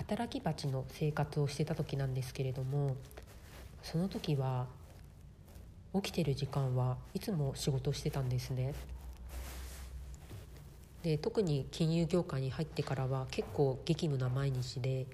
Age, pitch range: 40-59, 125-160 Hz